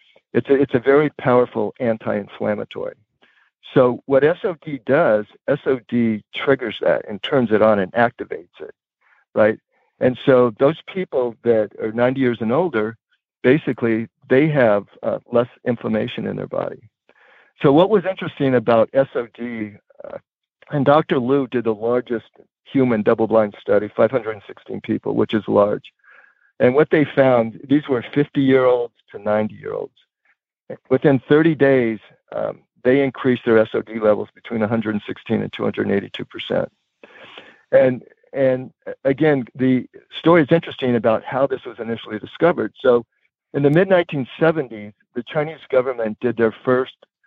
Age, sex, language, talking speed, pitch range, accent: 60-79, male, English, 135 wpm, 115-140 Hz, American